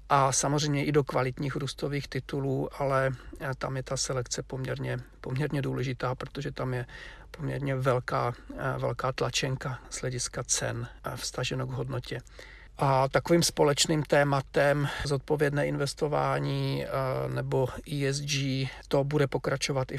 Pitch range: 125-140 Hz